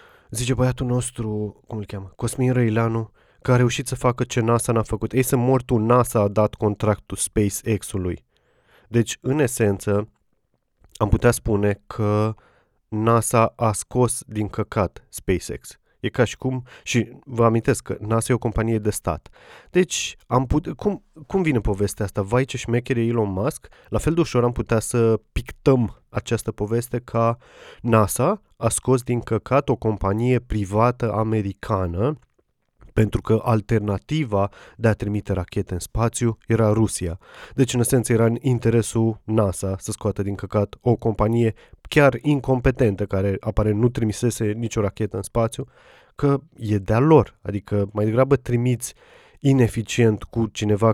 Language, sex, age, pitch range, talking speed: Romanian, male, 20-39, 105-125 Hz, 155 wpm